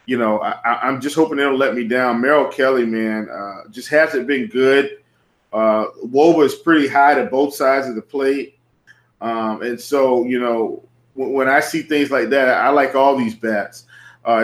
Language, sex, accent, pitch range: English, male, American, 125-155 Hz